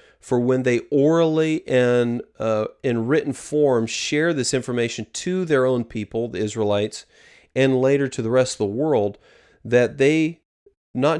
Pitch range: 115-145 Hz